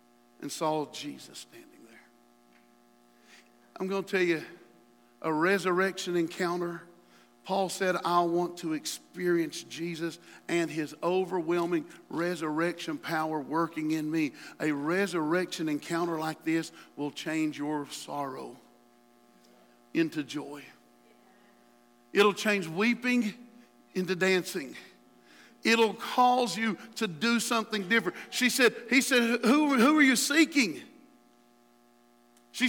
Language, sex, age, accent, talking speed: English, male, 50-69, American, 110 wpm